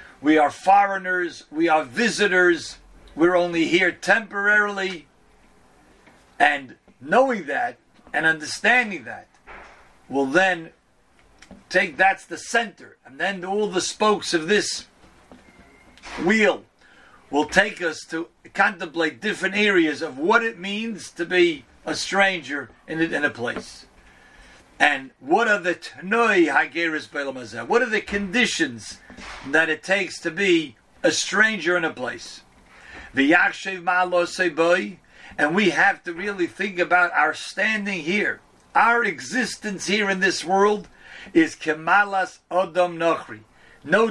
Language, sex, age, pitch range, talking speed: English, male, 50-69, 165-205 Hz, 125 wpm